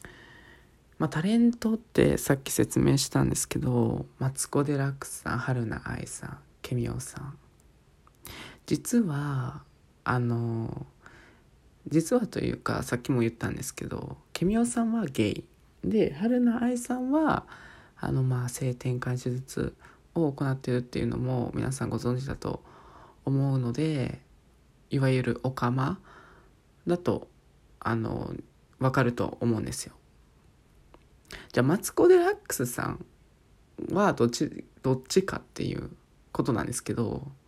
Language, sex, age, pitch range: Japanese, male, 20-39, 120-175 Hz